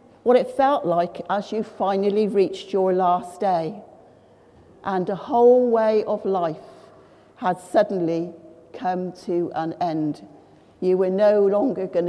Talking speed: 140 wpm